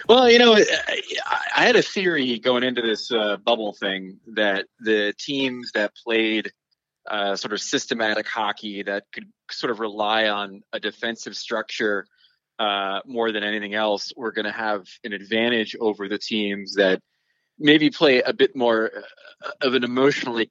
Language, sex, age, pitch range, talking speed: English, male, 20-39, 110-135 Hz, 160 wpm